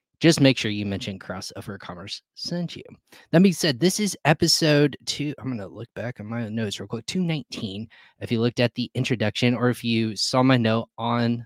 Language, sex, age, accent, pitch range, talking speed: English, male, 20-39, American, 105-130 Hz, 210 wpm